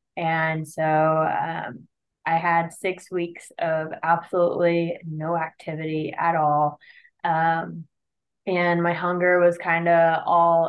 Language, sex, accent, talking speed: English, female, American, 120 wpm